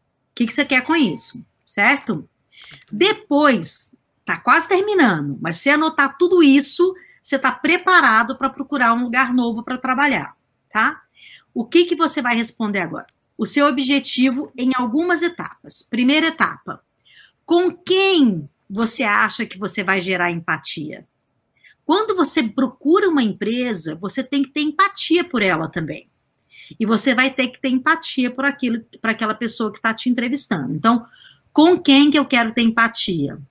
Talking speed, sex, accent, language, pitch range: 155 wpm, female, Brazilian, Portuguese, 215-305 Hz